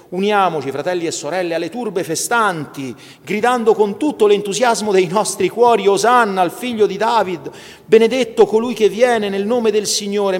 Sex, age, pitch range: male, 40-59, 130-190 Hz